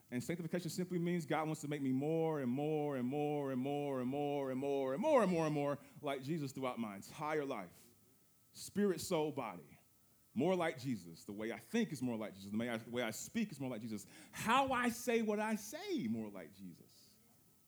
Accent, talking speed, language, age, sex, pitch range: American, 215 wpm, English, 30-49, male, 130-185 Hz